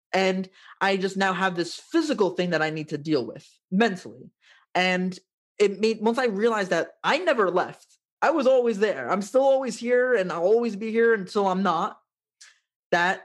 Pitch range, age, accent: 180-230 Hz, 20-39, American